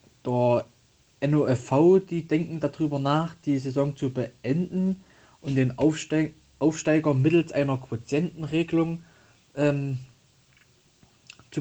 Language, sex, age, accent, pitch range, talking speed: German, male, 20-39, German, 120-155 Hz, 95 wpm